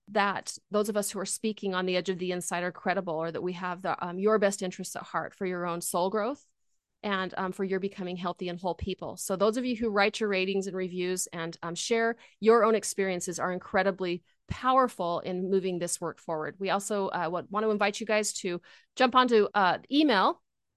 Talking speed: 225 wpm